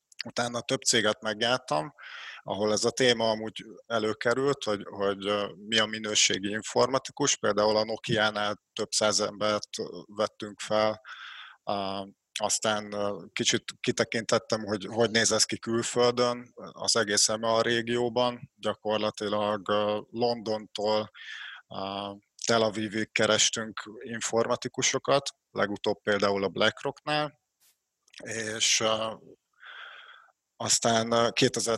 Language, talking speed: Hungarian, 95 wpm